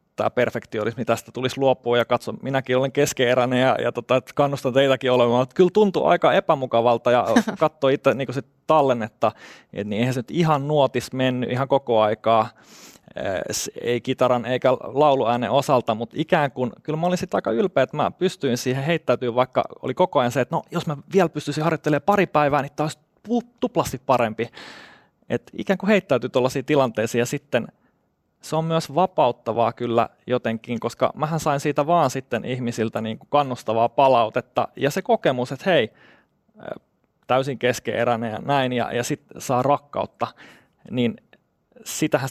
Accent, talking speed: native, 165 wpm